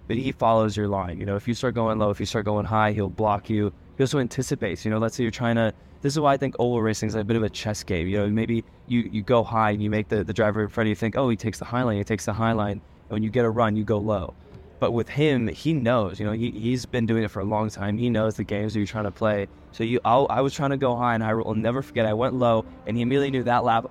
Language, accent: English, American